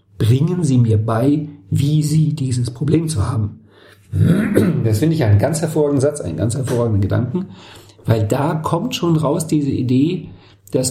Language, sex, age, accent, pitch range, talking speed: German, male, 50-69, German, 110-150 Hz, 160 wpm